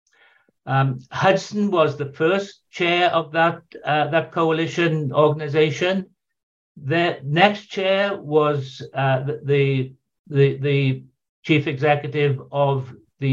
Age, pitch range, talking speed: 60-79, 140-165 Hz, 110 wpm